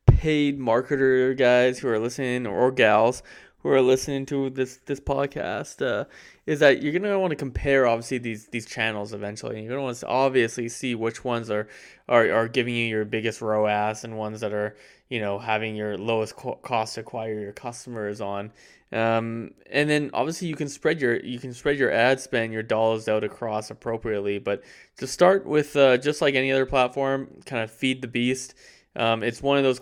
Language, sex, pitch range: English, male, 110-130 Hz